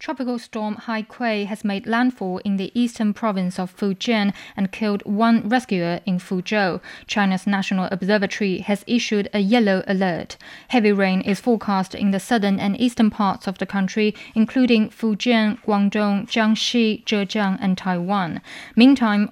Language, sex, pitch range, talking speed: English, female, 195-230 Hz, 150 wpm